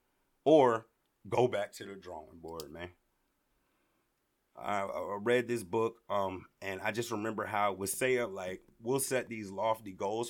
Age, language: 30-49, English